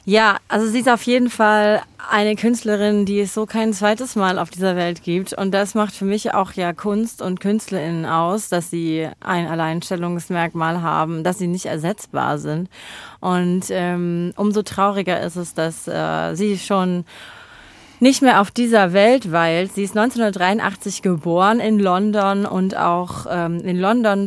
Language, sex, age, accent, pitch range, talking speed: German, female, 30-49, German, 175-205 Hz, 165 wpm